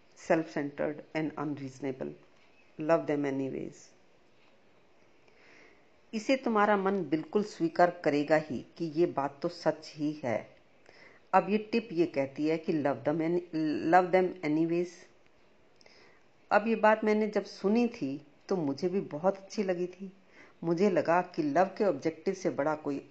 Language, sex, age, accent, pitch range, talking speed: Hindi, female, 50-69, native, 160-205 Hz, 145 wpm